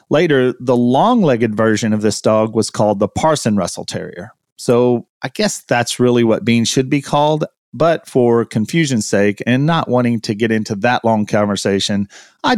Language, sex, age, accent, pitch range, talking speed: English, male, 40-59, American, 110-150 Hz, 175 wpm